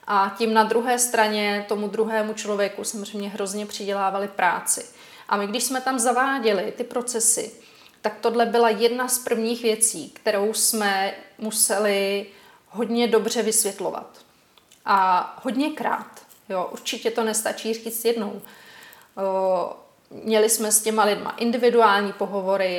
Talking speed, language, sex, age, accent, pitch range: 125 wpm, Czech, female, 30-49, native, 205-235 Hz